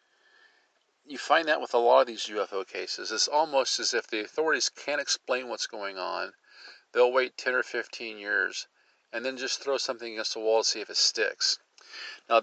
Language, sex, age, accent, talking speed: English, male, 50-69, American, 200 wpm